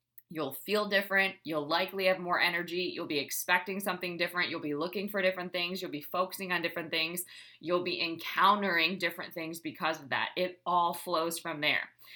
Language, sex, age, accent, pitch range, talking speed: English, female, 20-39, American, 160-200 Hz, 190 wpm